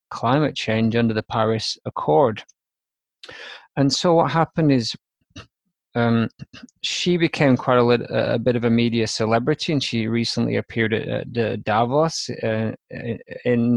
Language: English